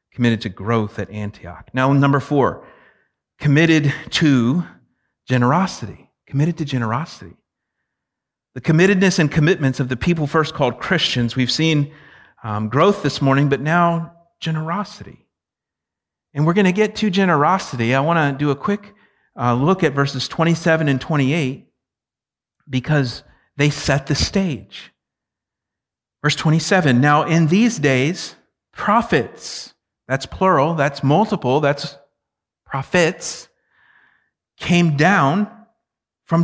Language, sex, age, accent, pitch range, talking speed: English, male, 40-59, American, 125-170 Hz, 120 wpm